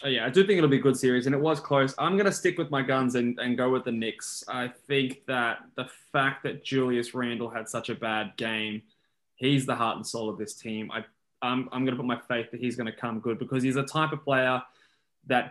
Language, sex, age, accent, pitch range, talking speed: English, male, 20-39, Australian, 115-135 Hz, 255 wpm